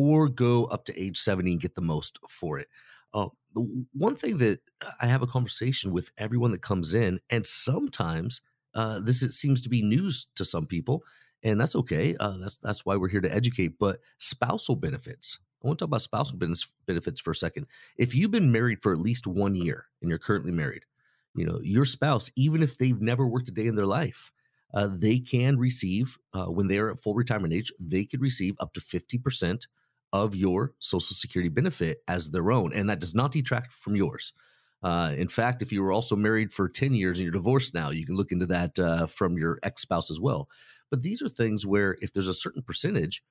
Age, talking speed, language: 30-49, 220 wpm, English